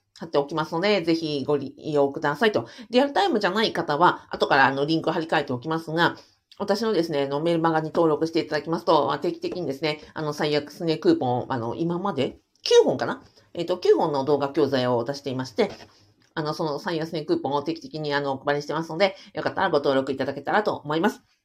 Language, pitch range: Japanese, 145-195 Hz